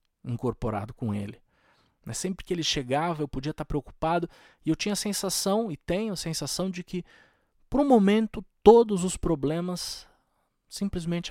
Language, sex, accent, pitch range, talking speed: Portuguese, male, Brazilian, 125-165 Hz, 155 wpm